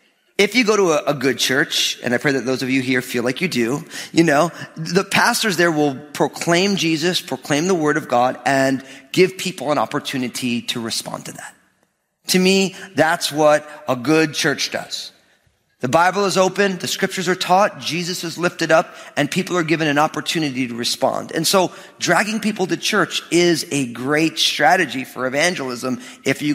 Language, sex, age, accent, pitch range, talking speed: English, male, 40-59, American, 145-195 Hz, 190 wpm